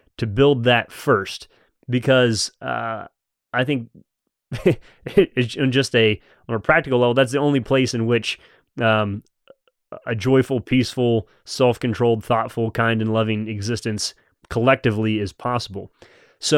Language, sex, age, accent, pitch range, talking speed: English, male, 30-49, American, 110-135 Hz, 125 wpm